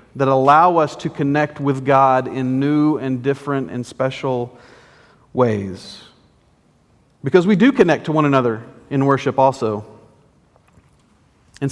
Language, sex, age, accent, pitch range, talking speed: English, male, 40-59, American, 125-155 Hz, 130 wpm